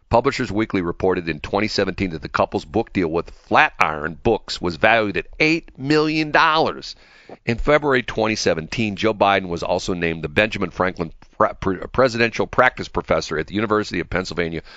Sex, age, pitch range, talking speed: male, 50-69, 90-120 Hz, 150 wpm